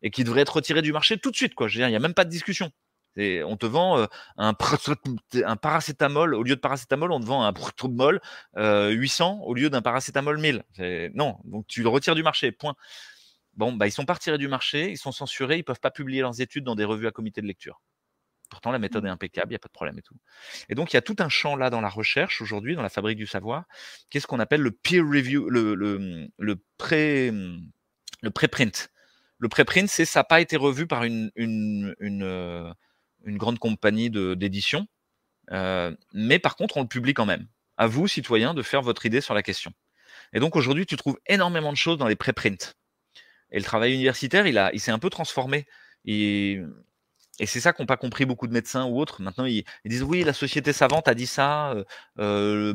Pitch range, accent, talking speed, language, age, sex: 105-145 Hz, French, 230 wpm, French, 30-49, male